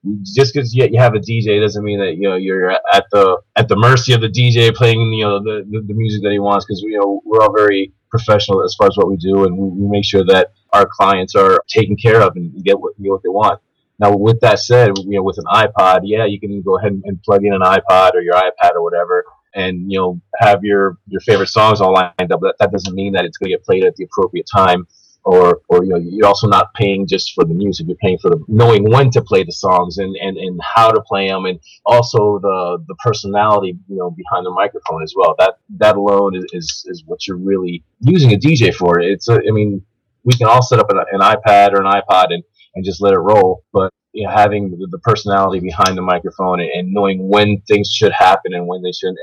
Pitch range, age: 95-110 Hz, 30-49